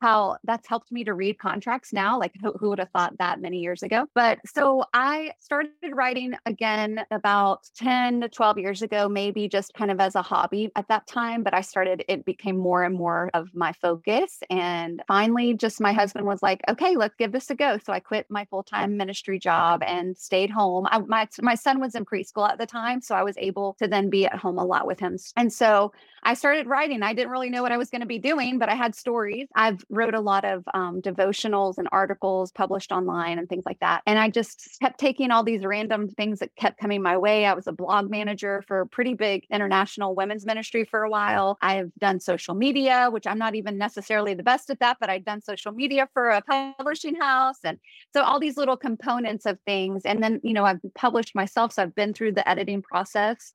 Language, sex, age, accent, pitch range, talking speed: English, female, 30-49, American, 195-235 Hz, 230 wpm